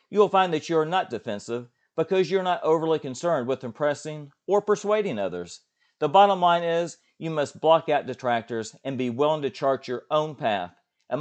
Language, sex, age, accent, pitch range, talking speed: English, male, 40-59, American, 120-175 Hz, 200 wpm